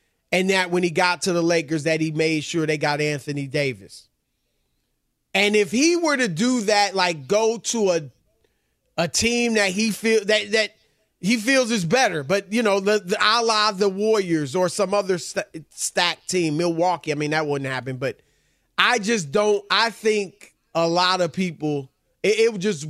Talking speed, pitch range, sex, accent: 190 wpm, 170-235 Hz, male, American